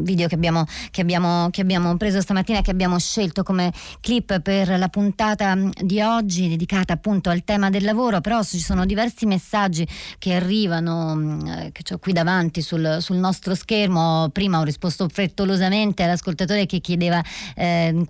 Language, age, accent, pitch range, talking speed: Italian, 30-49, native, 160-195 Hz, 165 wpm